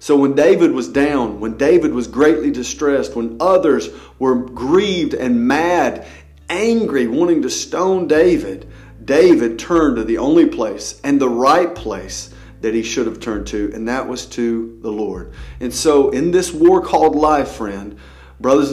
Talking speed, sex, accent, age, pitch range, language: 165 wpm, male, American, 40-59, 115-175 Hz, English